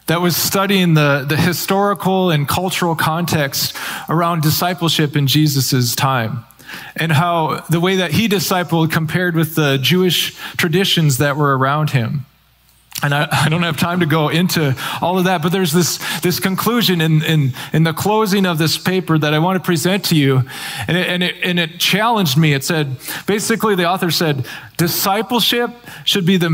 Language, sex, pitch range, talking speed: English, male, 150-190 Hz, 180 wpm